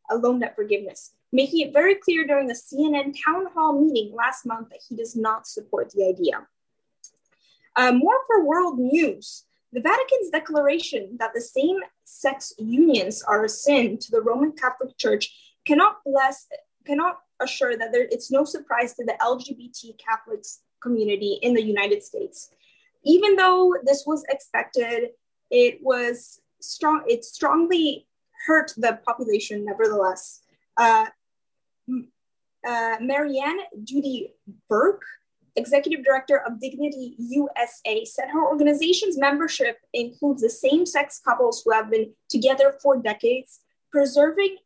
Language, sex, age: English, female, 10-29